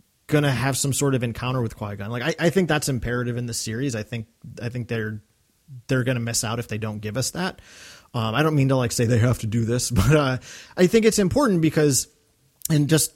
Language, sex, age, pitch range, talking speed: English, male, 30-49, 115-145 Hz, 250 wpm